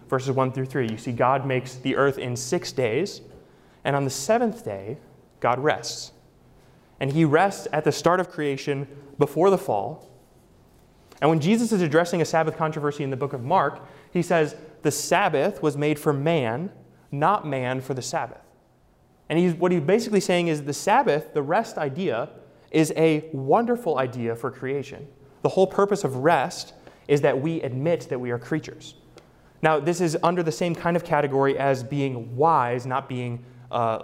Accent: American